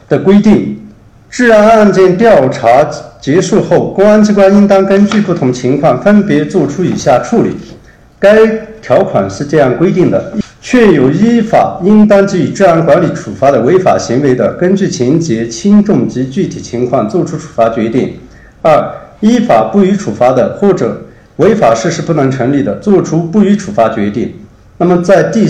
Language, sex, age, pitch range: Chinese, male, 50-69, 130-200 Hz